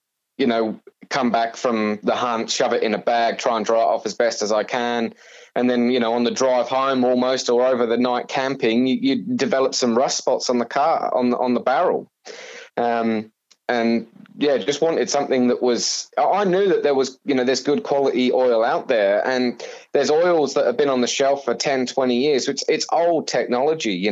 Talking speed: 220 wpm